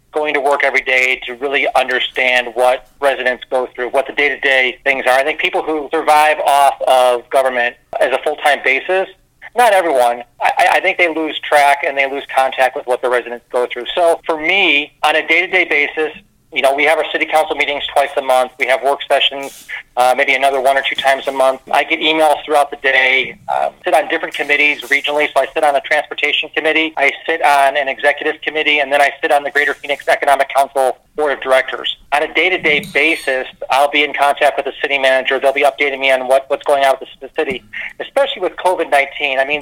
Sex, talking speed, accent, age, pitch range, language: male, 220 wpm, American, 40-59, 135-160 Hz, English